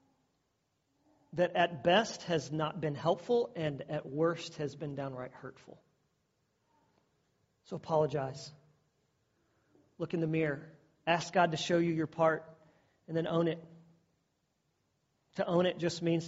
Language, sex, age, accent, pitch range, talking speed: English, male, 40-59, American, 150-195 Hz, 135 wpm